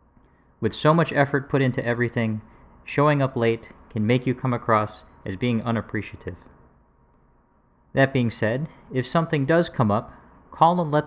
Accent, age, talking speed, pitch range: American, 40-59, 155 wpm, 110-135 Hz